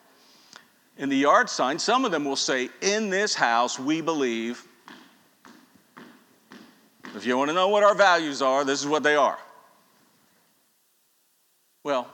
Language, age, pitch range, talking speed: English, 50-69, 135-205 Hz, 145 wpm